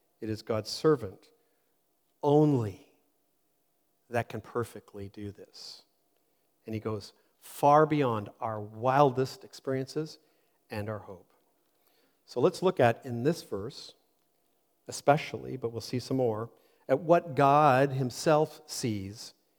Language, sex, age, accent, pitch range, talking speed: English, male, 50-69, American, 110-150 Hz, 120 wpm